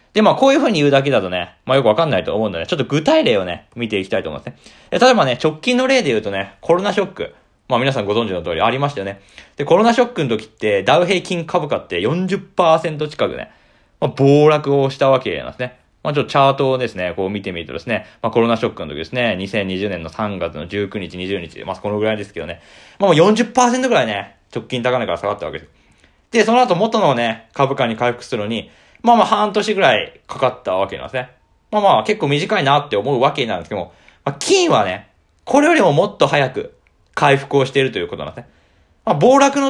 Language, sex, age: Japanese, male, 20-39